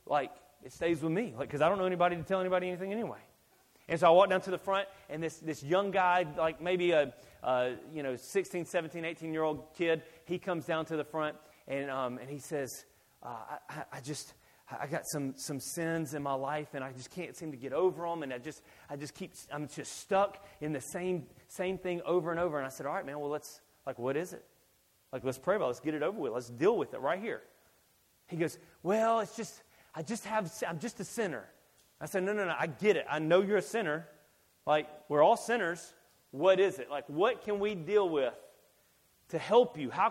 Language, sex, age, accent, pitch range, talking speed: English, male, 30-49, American, 145-185 Hz, 240 wpm